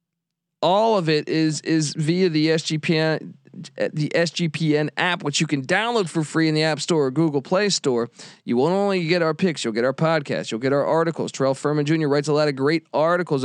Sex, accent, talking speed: male, American, 220 wpm